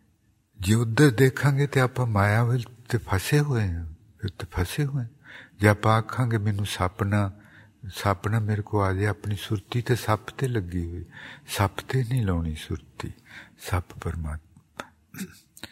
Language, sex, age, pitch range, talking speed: English, male, 60-79, 85-110 Hz, 40 wpm